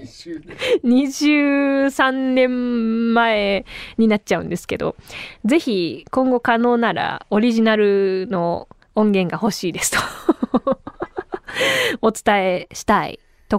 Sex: female